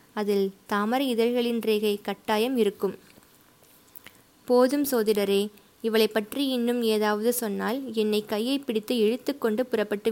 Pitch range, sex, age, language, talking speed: 205-245 Hz, female, 20-39, Tamil, 105 wpm